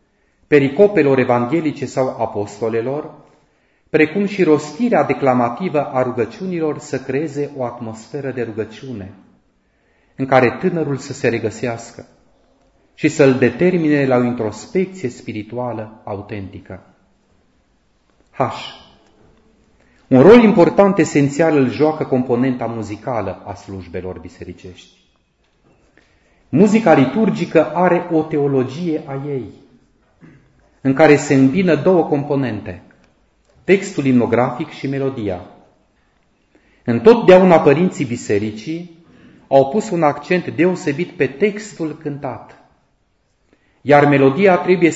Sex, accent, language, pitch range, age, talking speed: male, native, Romanian, 115-155 Hz, 30-49, 95 wpm